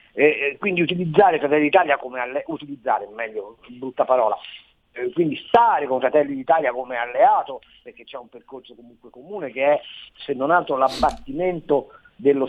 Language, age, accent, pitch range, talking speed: Italian, 50-69, native, 140-185 Hz, 130 wpm